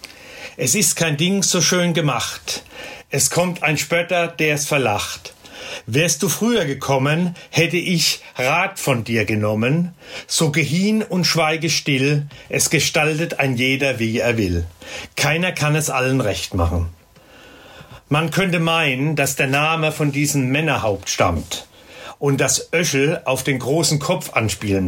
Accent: German